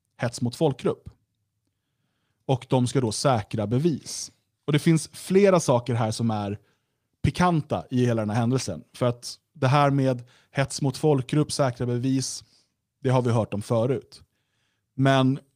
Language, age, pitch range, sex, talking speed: Swedish, 30-49, 110-135 Hz, male, 155 wpm